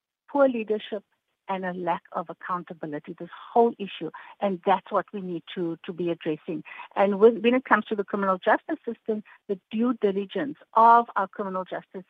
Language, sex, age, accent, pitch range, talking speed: English, female, 50-69, Indian, 190-250 Hz, 175 wpm